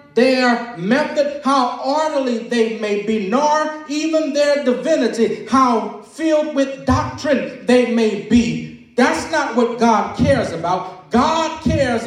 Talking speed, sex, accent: 130 wpm, male, American